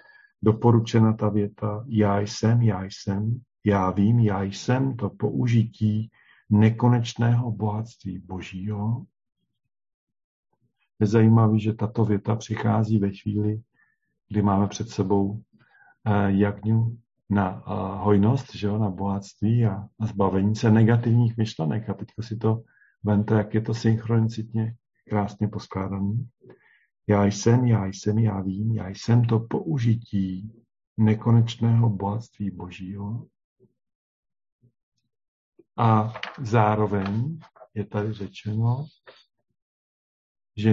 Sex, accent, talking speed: male, native, 105 wpm